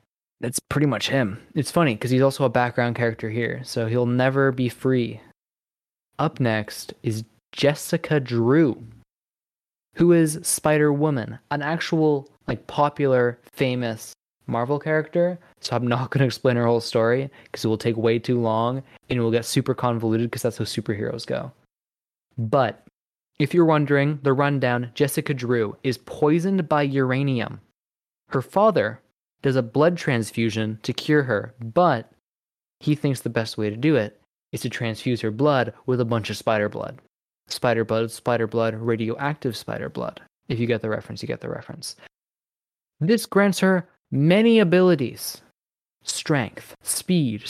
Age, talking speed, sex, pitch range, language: 20-39, 155 wpm, male, 115-150 Hz, English